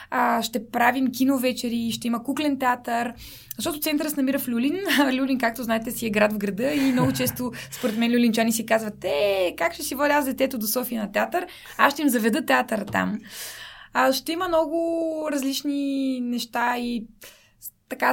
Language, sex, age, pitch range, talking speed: Bulgarian, female, 20-39, 225-275 Hz, 175 wpm